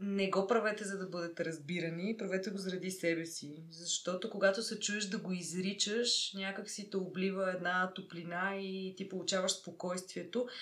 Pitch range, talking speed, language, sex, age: 180-220 Hz, 160 wpm, Bulgarian, female, 20-39